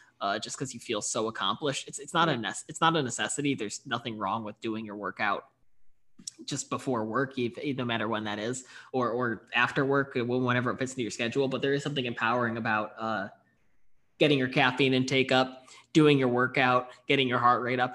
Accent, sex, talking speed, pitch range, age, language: American, male, 205 wpm, 120-140 Hz, 20-39, English